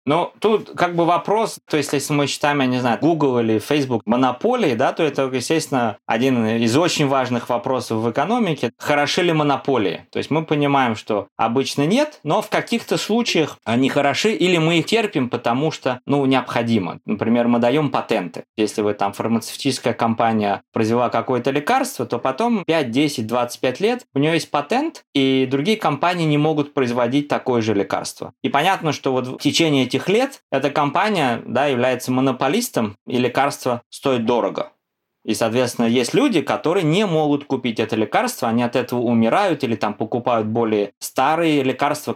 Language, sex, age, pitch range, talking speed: Russian, male, 20-39, 120-155 Hz, 170 wpm